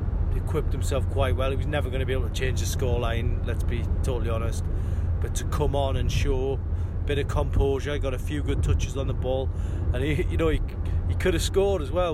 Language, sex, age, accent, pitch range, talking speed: English, male, 30-49, British, 85-90 Hz, 230 wpm